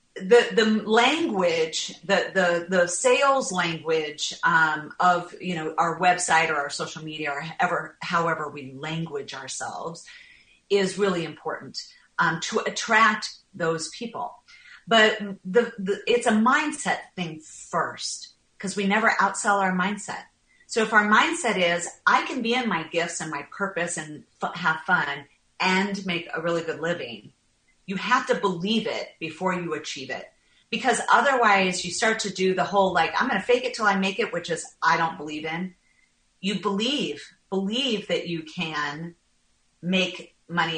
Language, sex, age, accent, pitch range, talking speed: English, female, 40-59, American, 170-235 Hz, 165 wpm